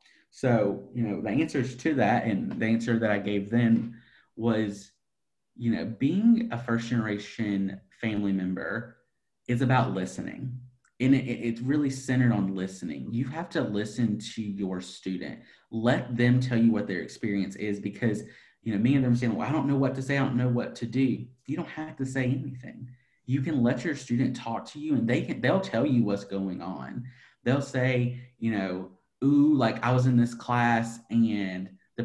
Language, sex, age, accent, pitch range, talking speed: English, male, 30-49, American, 105-130 Hz, 190 wpm